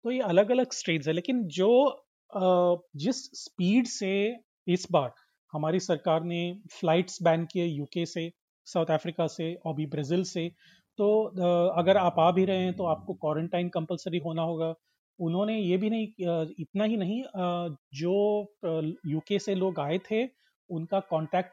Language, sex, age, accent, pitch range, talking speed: Hindi, male, 30-49, native, 165-210 Hz, 155 wpm